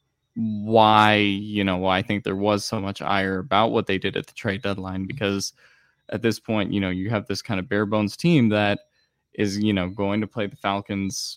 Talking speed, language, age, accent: 220 wpm, English, 10-29, American